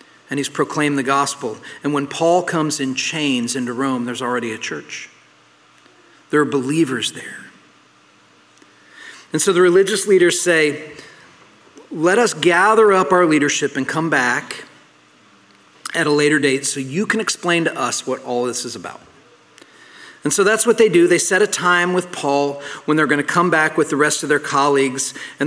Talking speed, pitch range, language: 175 wpm, 140-175 Hz, English